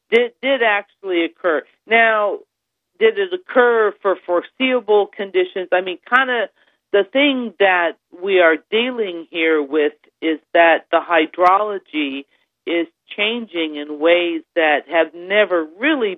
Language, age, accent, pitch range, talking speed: English, 40-59, American, 155-220 Hz, 130 wpm